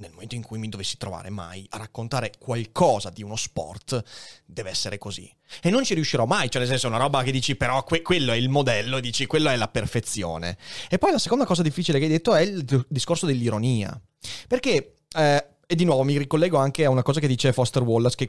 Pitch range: 120-160 Hz